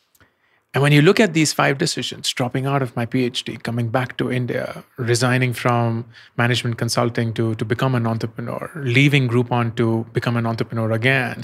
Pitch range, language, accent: 120-140 Hz, English, Indian